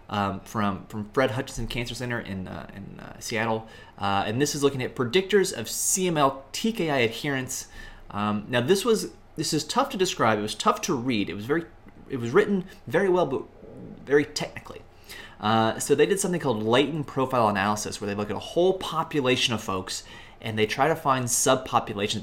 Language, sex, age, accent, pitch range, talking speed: English, male, 20-39, American, 105-135 Hz, 195 wpm